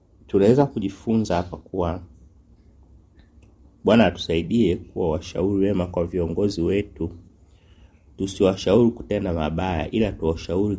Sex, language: male, Swahili